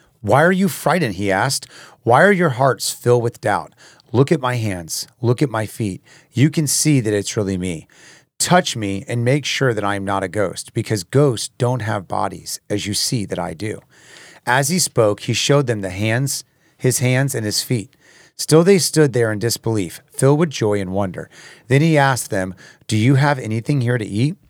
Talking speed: 210 wpm